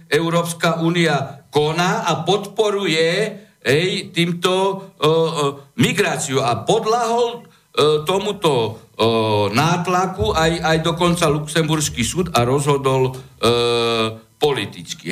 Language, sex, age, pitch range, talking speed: Slovak, male, 60-79, 140-175 Hz, 95 wpm